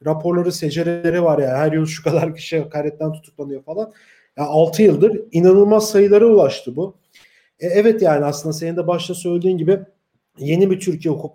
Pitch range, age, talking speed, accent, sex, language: 155-190 Hz, 40-59, 175 wpm, Turkish, male, German